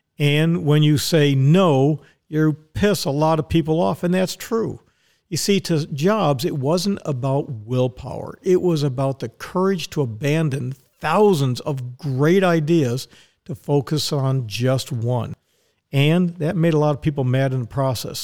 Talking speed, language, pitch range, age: 165 wpm, English, 130-160 Hz, 50-69